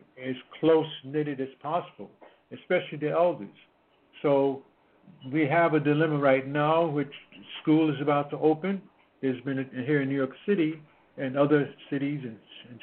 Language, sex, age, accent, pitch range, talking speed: English, male, 60-79, American, 130-155 Hz, 150 wpm